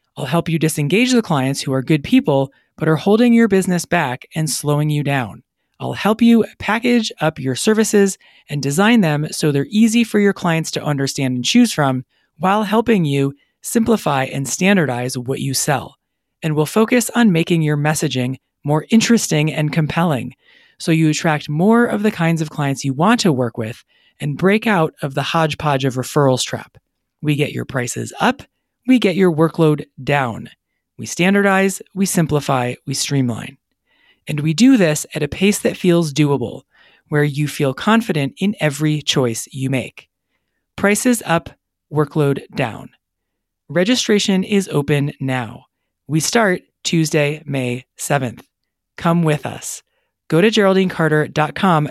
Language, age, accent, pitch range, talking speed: English, 30-49, American, 140-195 Hz, 160 wpm